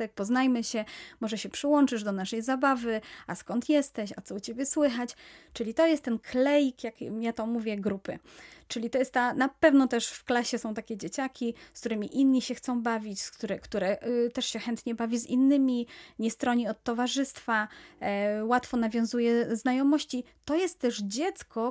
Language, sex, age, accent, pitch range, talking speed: Polish, female, 30-49, native, 230-290 Hz, 170 wpm